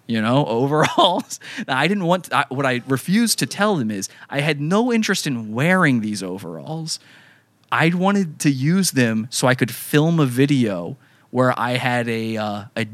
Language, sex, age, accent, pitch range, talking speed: English, male, 20-39, American, 120-160 Hz, 175 wpm